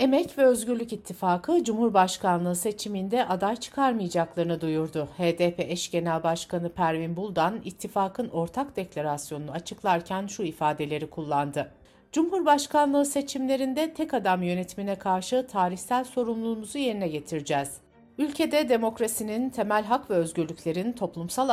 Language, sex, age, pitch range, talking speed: Turkish, female, 60-79, 165-235 Hz, 110 wpm